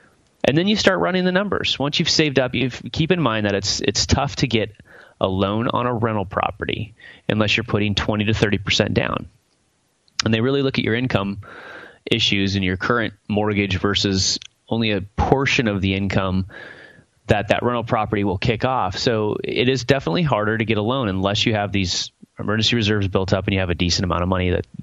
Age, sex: 30-49, male